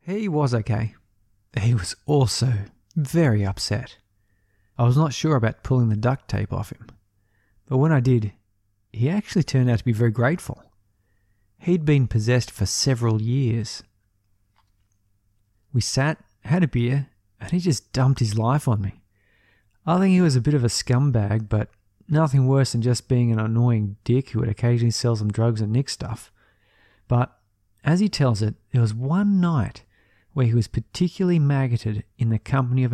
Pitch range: 105-135 Hz